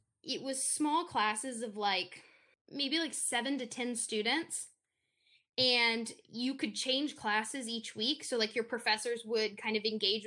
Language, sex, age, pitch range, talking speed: English, female, 10-29, 215-260 Hz, 160 wpm